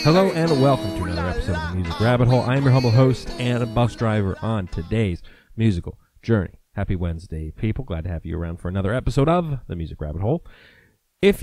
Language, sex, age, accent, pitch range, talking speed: English, male, 30-49, American, 85-125 Hz, 215 wpm